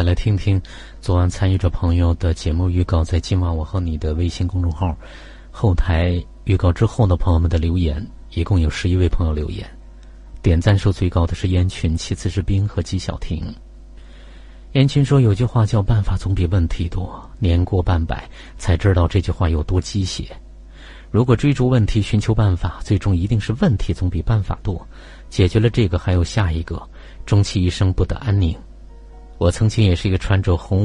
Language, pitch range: Chinese, 85-100 Hz